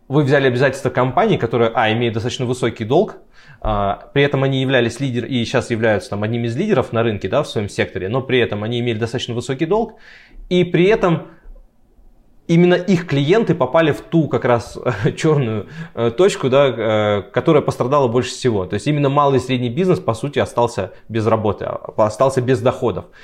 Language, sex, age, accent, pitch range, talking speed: Russian, male, 20-39, native, 110-140 Hz, 180 wpm